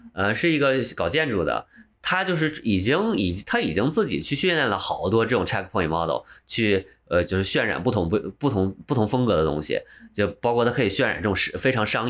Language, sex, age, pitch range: Chinese, male, 20-39, 85-125 Hz